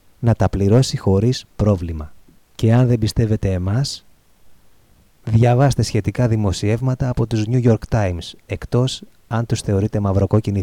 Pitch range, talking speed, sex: 95-110 Hz, 130 wpm, male